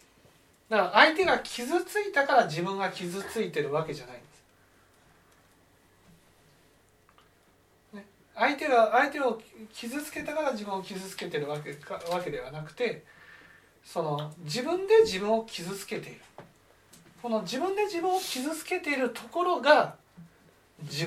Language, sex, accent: Japanese, male, native